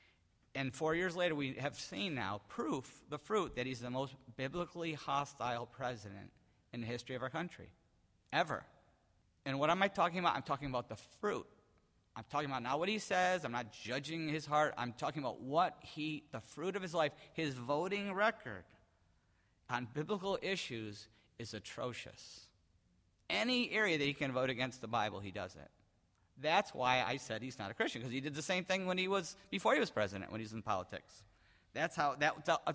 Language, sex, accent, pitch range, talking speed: English, male, American, 110-165 Hz, 195 wpm